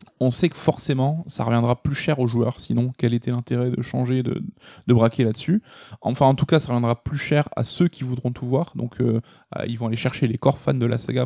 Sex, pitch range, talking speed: male, 120-145 Hz, 245 wpm